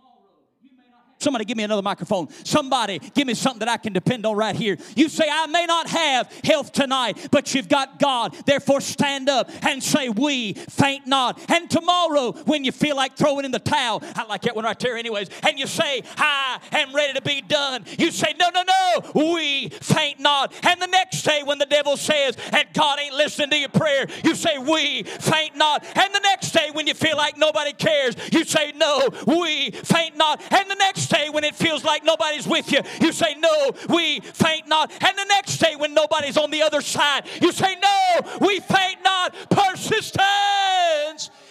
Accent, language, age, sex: American, English, 40-59, male